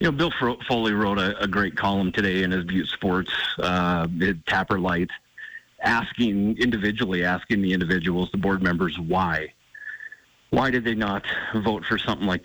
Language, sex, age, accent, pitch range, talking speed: English, male, 40-59, American, 95-120 Hz, 165 wpm